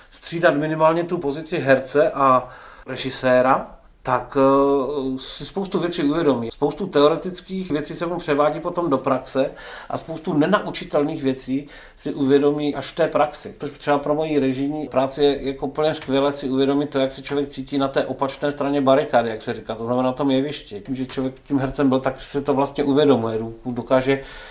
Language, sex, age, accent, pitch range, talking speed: Czech, male, 40-59, native, 120-145 Hz, 180 wpm